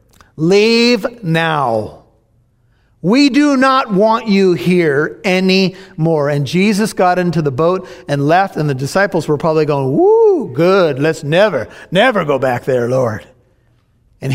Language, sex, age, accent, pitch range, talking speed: English, male, 50-69, American, 155-190 Hz, 140 wpm